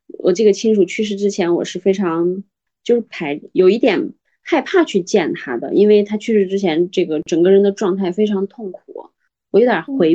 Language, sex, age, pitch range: Chinese, female, 20-39, 175-220 Hz